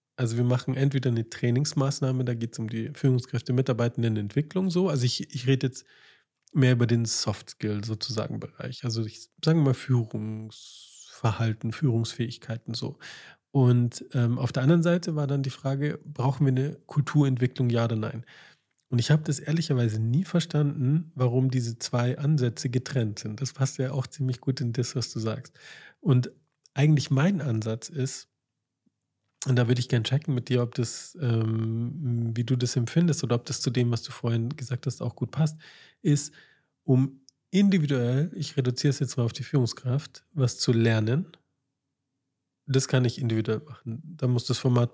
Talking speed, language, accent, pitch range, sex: 175 wpm, German, German, 120-140 Hz, male